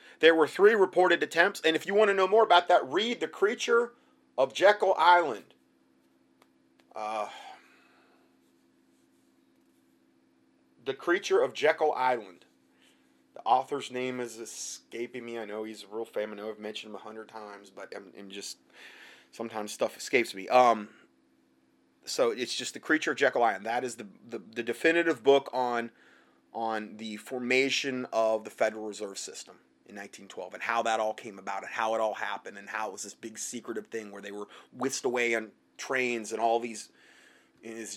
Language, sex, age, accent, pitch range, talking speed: English, male, 30-49, American, 95-140 Hz, 175 wpm